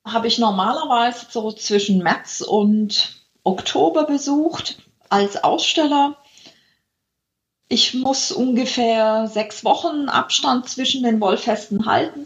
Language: German